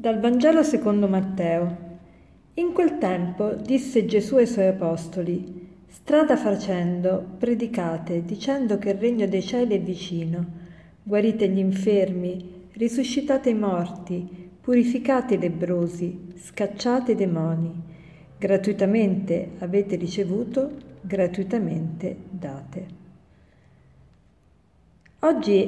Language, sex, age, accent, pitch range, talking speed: Italian, female, 50-69, native, 180-215 Hz, 95 wpm